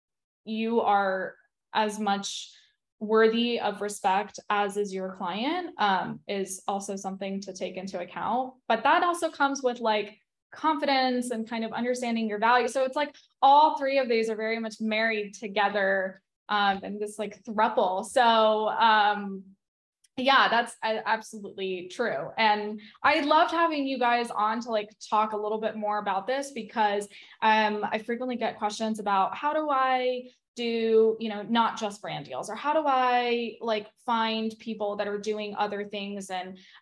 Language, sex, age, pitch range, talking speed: English, female, 10-29, 200-245 Hz, 165 wpm